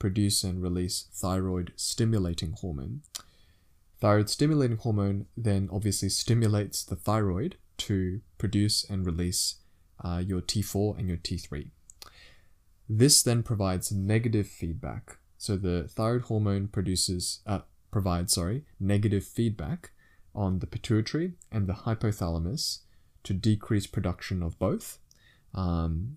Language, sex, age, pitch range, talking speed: English, male, 20-39, 90-105 Hz, 115 wpm